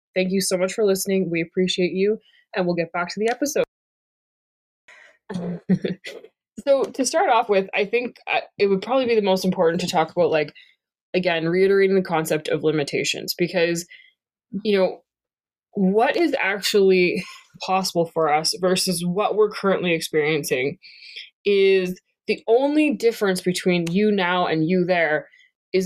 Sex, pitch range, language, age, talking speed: female, 175-220 Hz, English, 20-39, 150 wpm